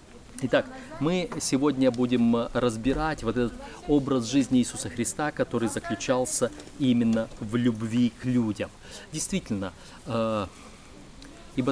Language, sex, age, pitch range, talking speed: Russian, male, 30-49, 115-150 Hz, 100 wpm